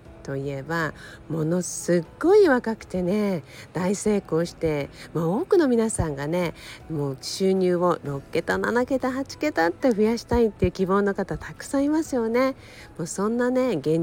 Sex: female